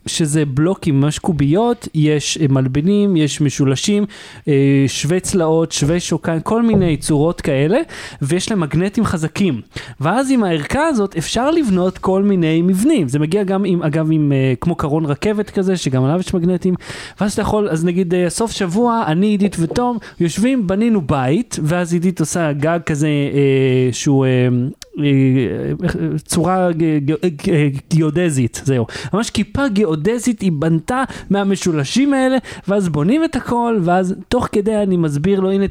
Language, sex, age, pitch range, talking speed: Hebrew, male, 30-49, 150-200 Hz, 140 wpm